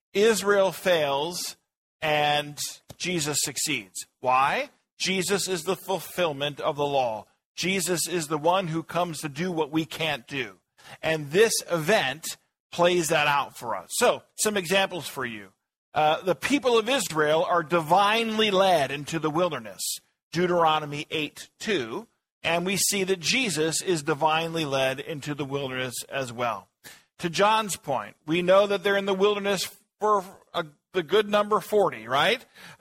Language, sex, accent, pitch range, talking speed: English, male, American, 155-205 Hz, 150 wpm